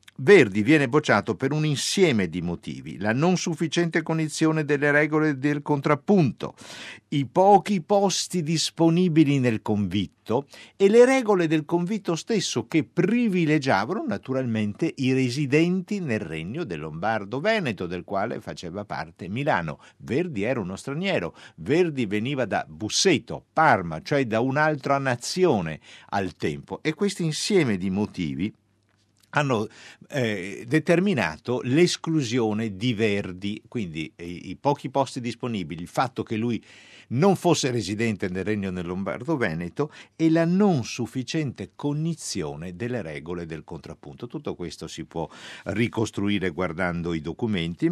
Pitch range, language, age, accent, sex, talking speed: 100-155 Hz, Italian, 50-69, native, male, 130 wpm